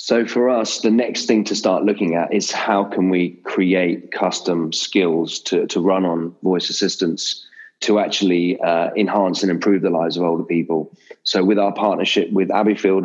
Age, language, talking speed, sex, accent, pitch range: 30-49, English, 185 wpm, male, British, 85-100 Hz